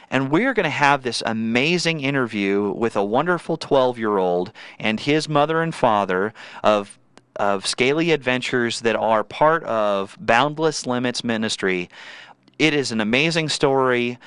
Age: 30-49